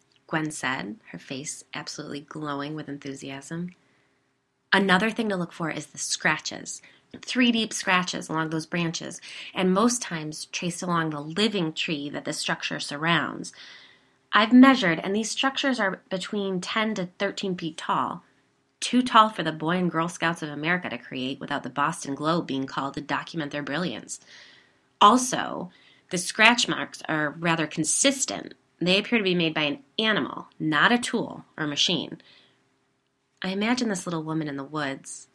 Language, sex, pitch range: English, female, 150-190 Hz